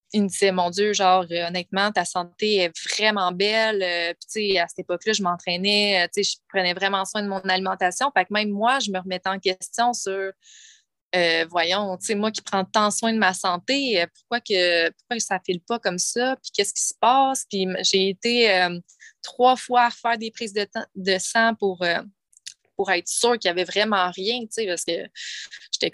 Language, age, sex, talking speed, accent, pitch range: French, 20-39, female, 205 wpm, Canadian, 185-225 Hz